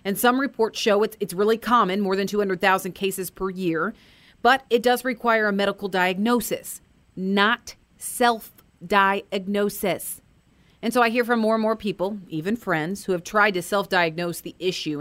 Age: 40-59